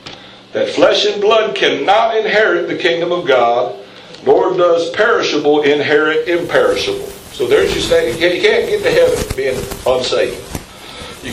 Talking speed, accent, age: 145 wpm, American, 60-79